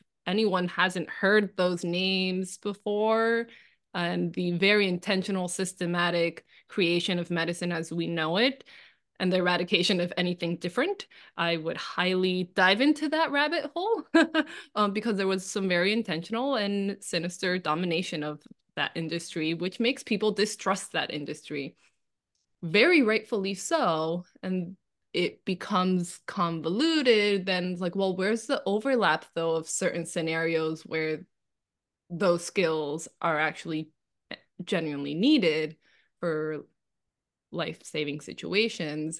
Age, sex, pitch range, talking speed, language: 20-39, female, 170-220 Hz, 120 wpm, English